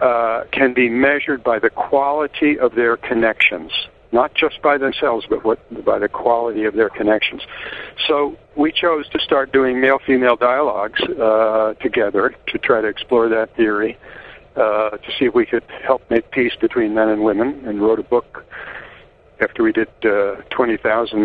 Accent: American